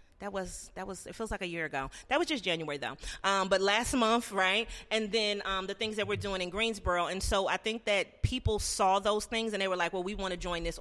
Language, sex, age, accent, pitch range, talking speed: English, female, 30-49, American, 185-220 Hz, 270 wpm